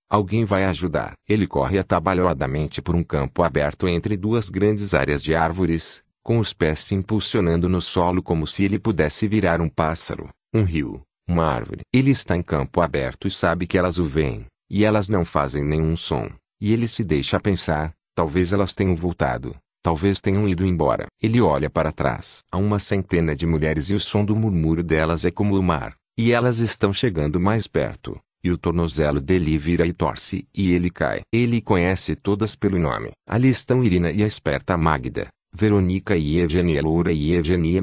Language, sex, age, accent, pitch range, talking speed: Portuguese, male, 40-59, Brazilian, 80-105 Hz, 185 wpm